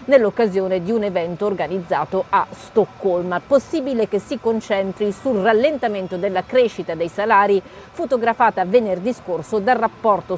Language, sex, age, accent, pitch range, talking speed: Italian, female, 40-59, native, 185-230 Hz, 125 wpm